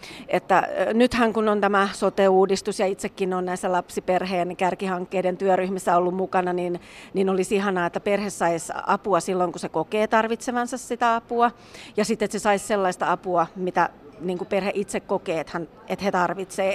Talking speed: 165 wpm